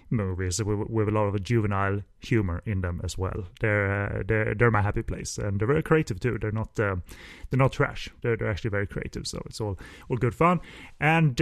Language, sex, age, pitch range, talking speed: English, male, 30-49, 110-130 Hz, 225 wpm